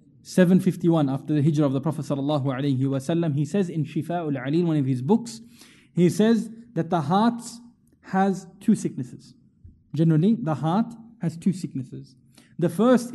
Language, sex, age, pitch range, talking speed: English, male, 20-39, 150-210 Hz, 150 wpm